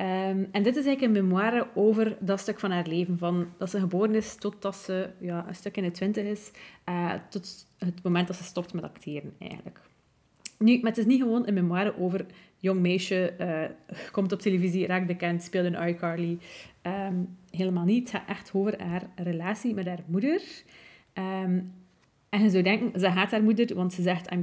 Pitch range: 180-215 Hz